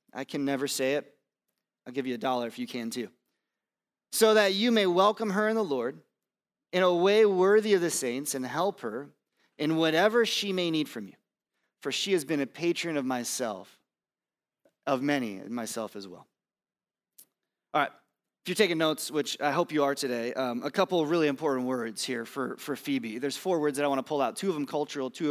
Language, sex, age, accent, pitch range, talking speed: English, male, 30-49, American, 140-200 Hz, 215 wpm